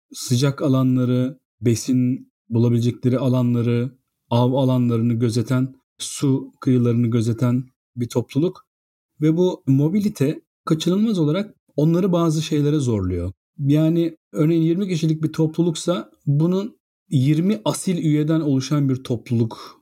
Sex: male